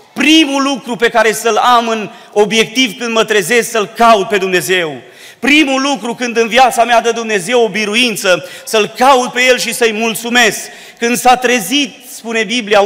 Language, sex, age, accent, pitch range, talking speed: Romanian, male, 30-49, native, 185-240 Hz, 175 wpm